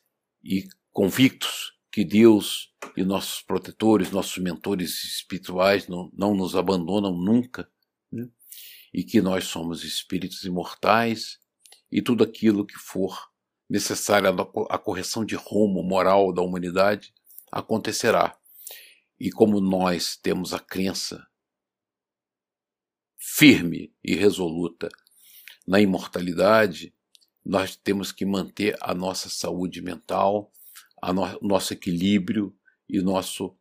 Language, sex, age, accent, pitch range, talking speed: Portuguese, male, 50-69, Brazilian, 90-100 Hz, 105 wpm